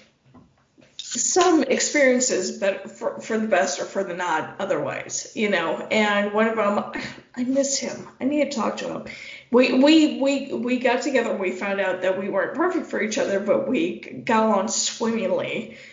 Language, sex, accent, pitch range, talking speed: English, female, American, 195-270 Hz, 185 wpm